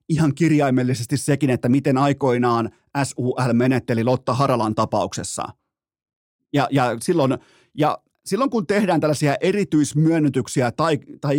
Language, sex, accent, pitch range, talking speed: Finnish, male, native, 130-175 Hz, 115 wpm